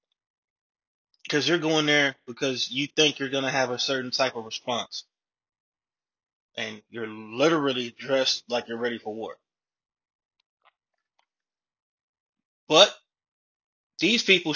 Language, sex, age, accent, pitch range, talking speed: English, male, 20-39, American, 130-155 Hz, 115 wpm